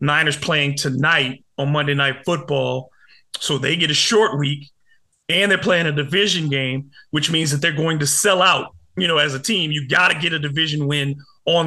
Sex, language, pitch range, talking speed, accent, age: male, English, 145-175 Hz, 205 wpm, American, 30-49